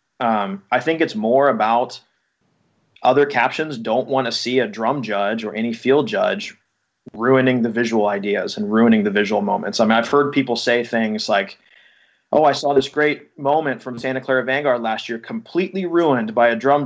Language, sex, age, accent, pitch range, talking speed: English, male, 20-39, American, 115-145 Hz, 190 wpm